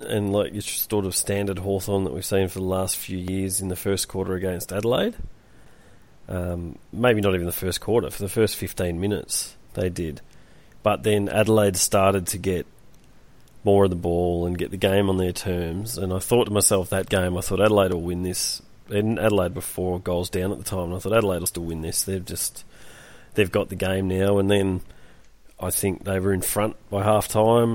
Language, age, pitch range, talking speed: English, 30-49, 95-105 Hz, 215 wpm